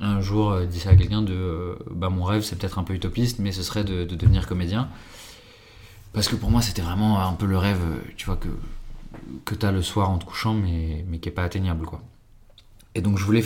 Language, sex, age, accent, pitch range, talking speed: French, male, 20-39, French, 90-110 Hz, 255 wpm